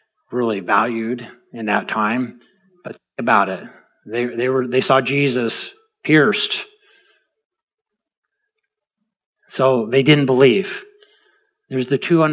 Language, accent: English, American